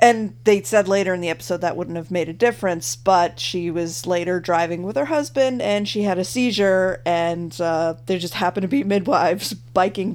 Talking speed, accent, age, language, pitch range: 205 wpm, American, 40-59, English, 150-190 Hz